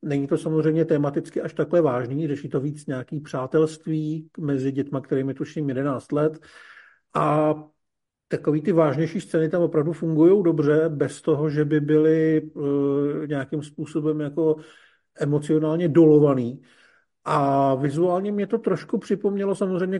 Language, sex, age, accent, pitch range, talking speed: Czech, male, 50-69, native, 145-165 Hz, 130 wpm